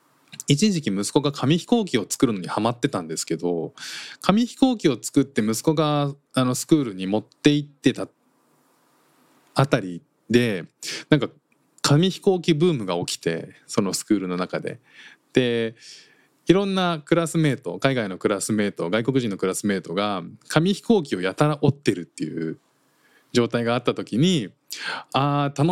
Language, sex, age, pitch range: Japanese, male, 20-39, 105-165 Hz